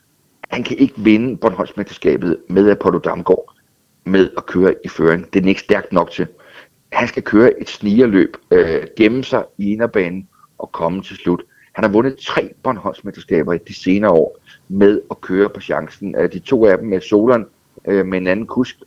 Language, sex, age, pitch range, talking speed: Danish, male, 60-79, 105-170 Hz, 185 wpm